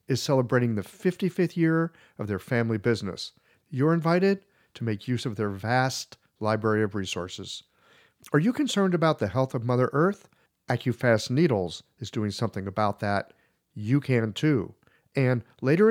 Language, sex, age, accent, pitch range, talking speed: English, male, 50-69, American, 105-150 Hz, 155 wpm